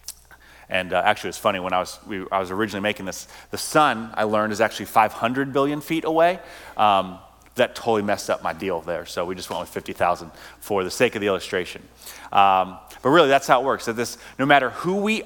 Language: English